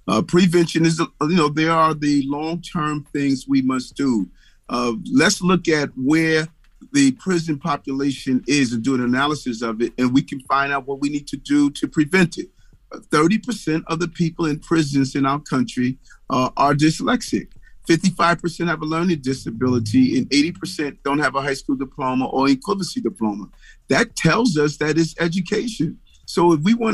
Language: English